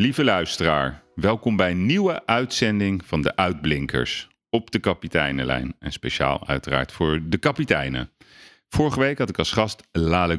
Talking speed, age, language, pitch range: 150 wpm, 40-59, Dutch, 80-95 Hz